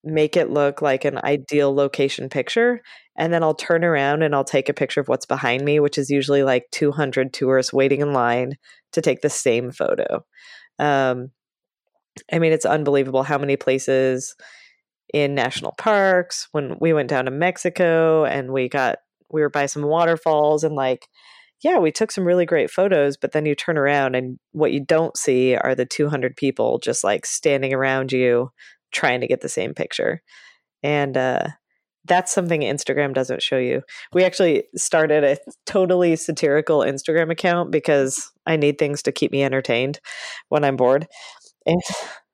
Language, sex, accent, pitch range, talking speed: English, female, American, 140-185 Hz, 175 wpm